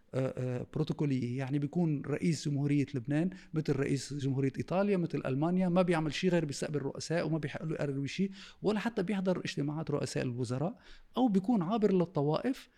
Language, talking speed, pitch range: Arabic, 145 wpm, 140-185 Hz